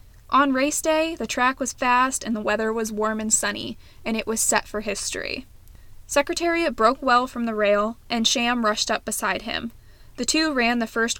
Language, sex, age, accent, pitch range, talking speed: English, female, 20-39, American, 210-245 Hz, 200 wpm